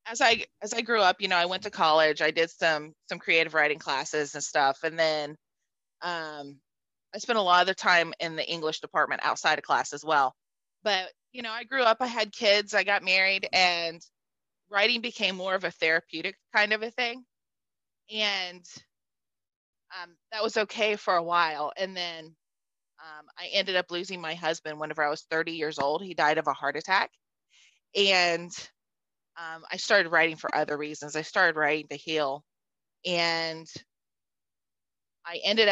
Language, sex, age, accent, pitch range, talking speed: English, female, 20-39, American, 155-190 Hz, 180 wpm